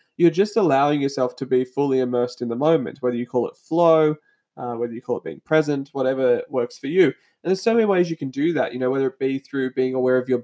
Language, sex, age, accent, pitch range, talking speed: English, male, 20-39, Australian, 125-140 Hz, 265 wpm